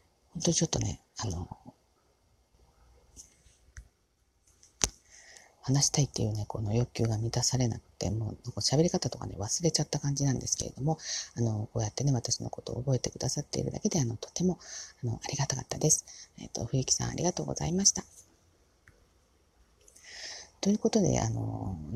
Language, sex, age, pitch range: Japanese, female, 40-59, 110-155 Hz